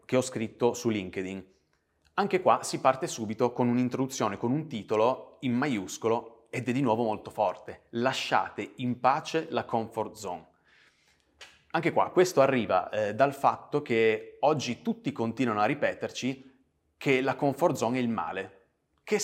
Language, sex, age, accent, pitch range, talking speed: Italian, male, 30-49, native, 110-140 Hz, 155 wpm